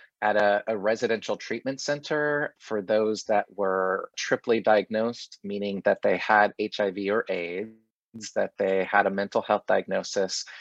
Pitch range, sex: 100-130 Hz, male